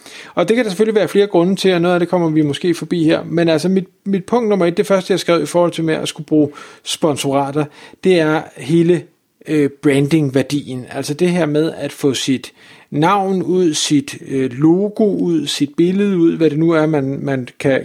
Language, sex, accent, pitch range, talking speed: Danish, male, native, 145-180 Hz, 220 wpm